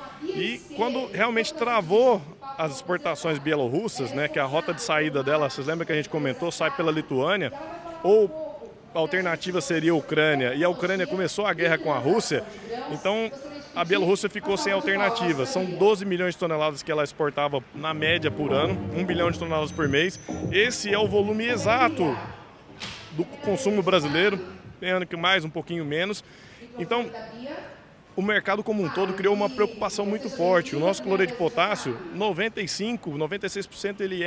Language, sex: Portuguese, male